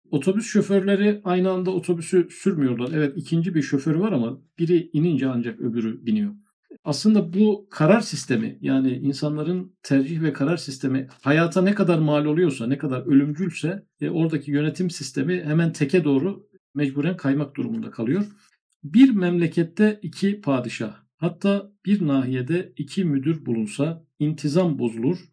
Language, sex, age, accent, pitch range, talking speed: Turkish, male, 50-69, native, 140-185 Hz, 135 wpm